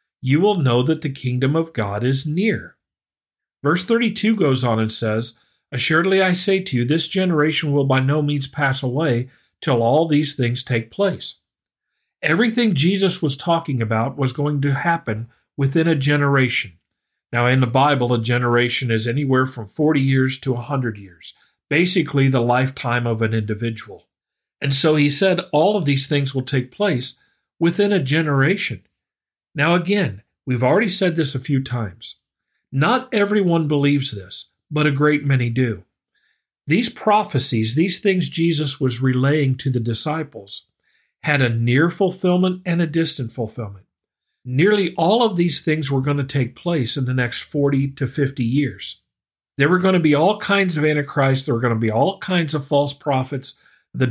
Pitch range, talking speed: 125-165 Hz, 170 wpm